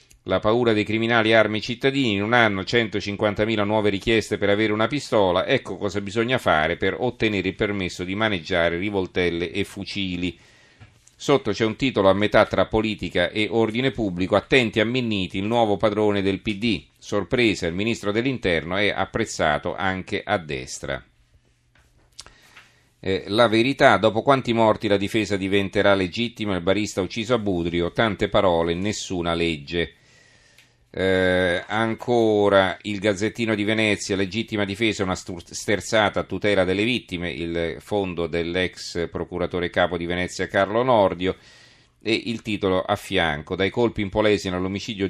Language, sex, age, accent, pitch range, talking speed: Italian, male, 40-59, native, 90-110 Hz, 145 wpm